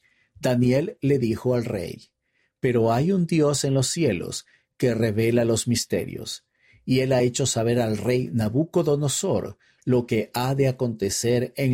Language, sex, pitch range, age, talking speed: Spanish, male, 115-135 Hz, 50-69, 155 wpm